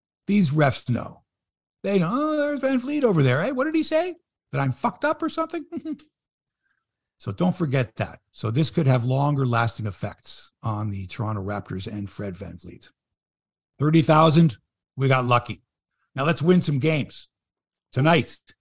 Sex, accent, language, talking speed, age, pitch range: male, American, English, 160 wpm, 60-79, 115-175 Hz